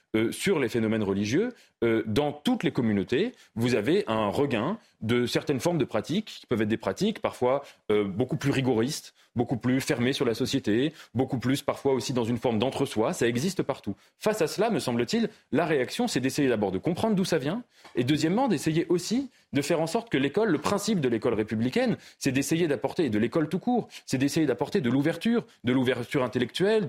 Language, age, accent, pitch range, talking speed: French, 30-49, French, 125-180 Hz, 205 wpm